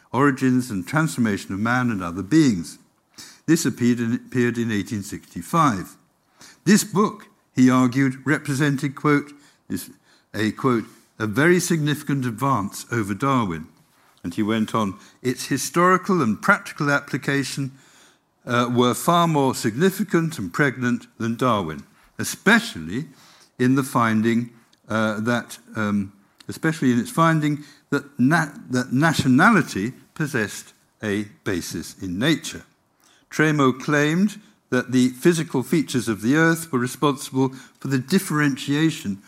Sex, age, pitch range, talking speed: male, 60-79, 120-160 Hz, 120 wpm